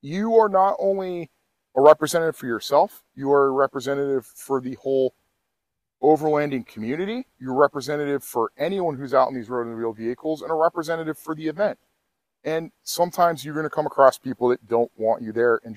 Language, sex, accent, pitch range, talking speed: English, male, American, 125-160 Hz, 190 wpm